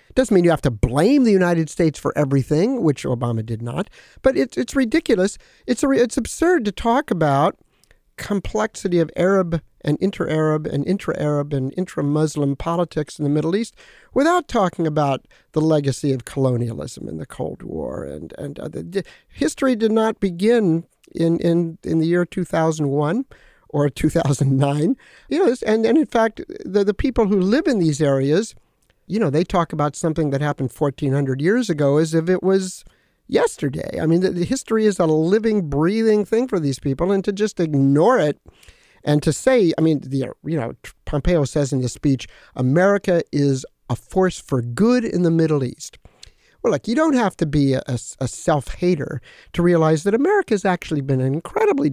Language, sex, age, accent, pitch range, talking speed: English, male, 50-69, American, 145-215 Hz, 185 wpm